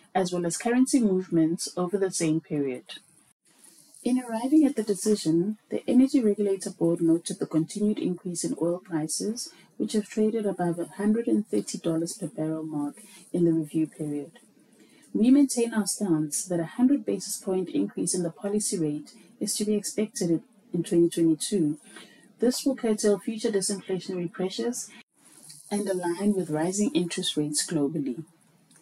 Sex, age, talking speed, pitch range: female, 30-49, 145 wpm, 170-230 Hz